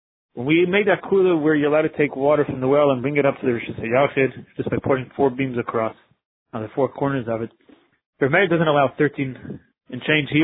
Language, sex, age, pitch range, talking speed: English, male, 30-49, 135-175 Hz, 230 wpm